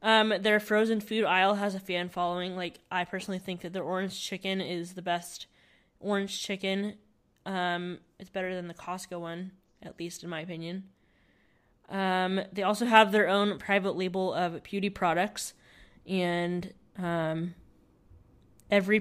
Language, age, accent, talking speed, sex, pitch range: English, 20-39, American, 150 wpm, female, 175-200 Hz